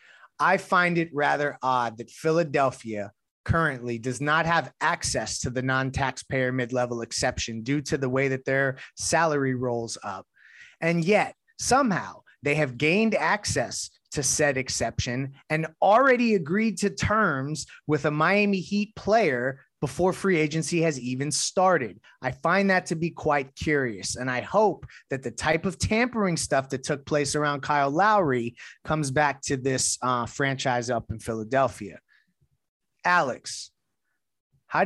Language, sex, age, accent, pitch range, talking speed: English, male, 30-49, American, 125-165 Hz, 145 wpm